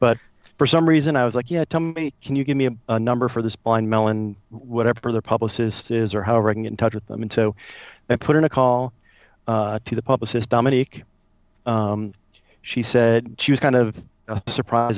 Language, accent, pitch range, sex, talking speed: English, American, 105-125 Hz, male, 215 wpm